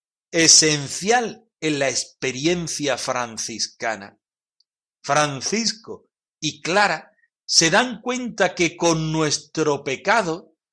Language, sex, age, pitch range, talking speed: Spanish, male, 60-79, 135-190 Hz, 85 wpm